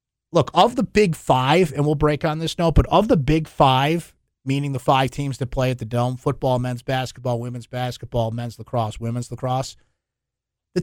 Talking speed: 195 wpm